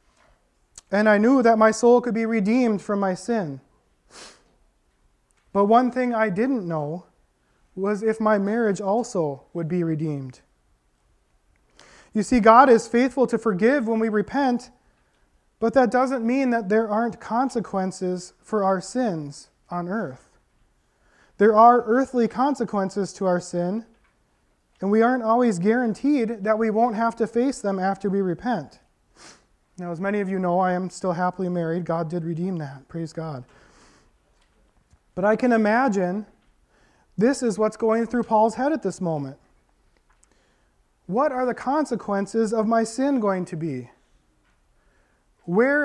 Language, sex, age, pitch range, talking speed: English, male, 20-39, 180-235 Hz, 150 wpm